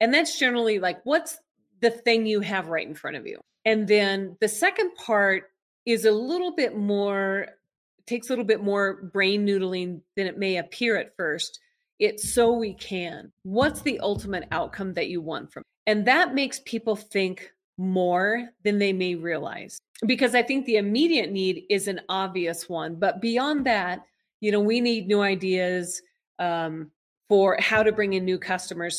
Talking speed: 180 wpm